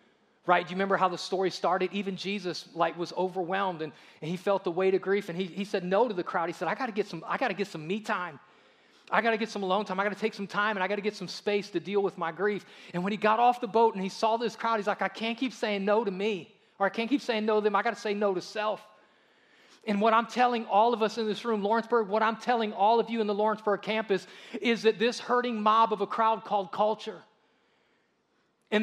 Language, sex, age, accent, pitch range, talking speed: English, male, 30-49, American, 190-225 Hz, 275 wpm